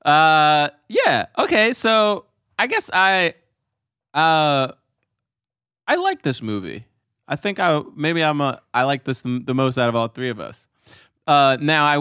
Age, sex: 20-39, male